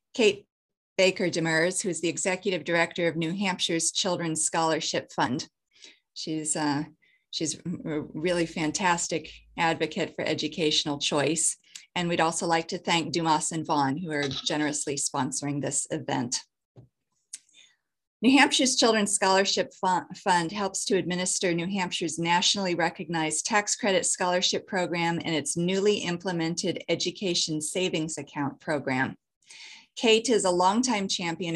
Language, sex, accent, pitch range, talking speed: English, female, American, 160-190 Hz, 130 wpm